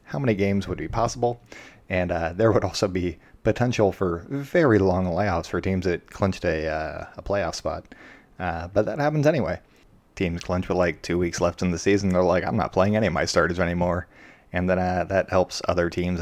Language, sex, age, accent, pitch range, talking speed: English, male, 20-39, American, 85-100 Hz, 215 wpm